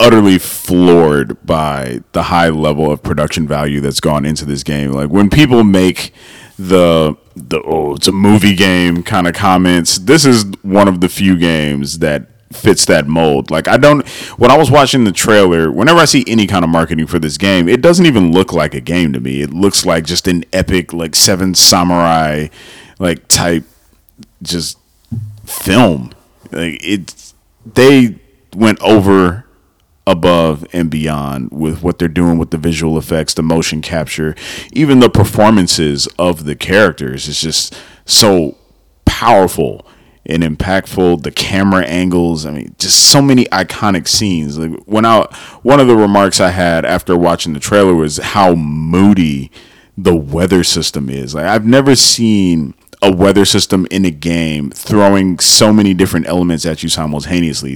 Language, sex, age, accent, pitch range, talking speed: English, male, 30-49, American, 80-100 Hz, 165 wpm